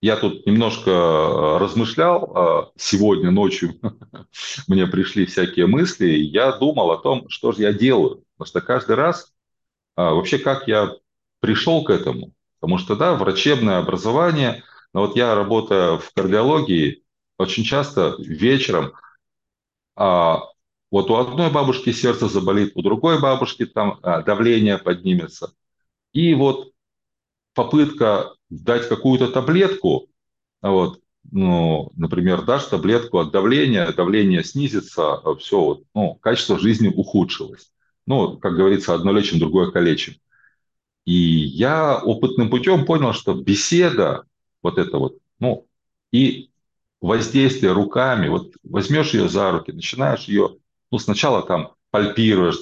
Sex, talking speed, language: male, 120 wpm, Russian